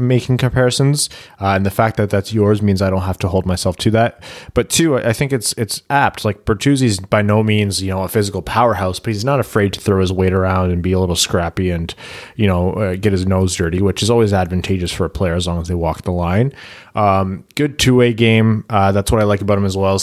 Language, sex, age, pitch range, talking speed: English, male, 20-39, 90-110 Hz, 250 wpm